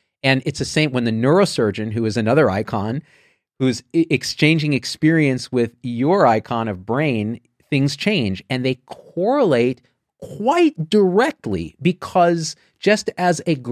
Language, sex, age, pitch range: English, male, 40-59, 115-160 Hz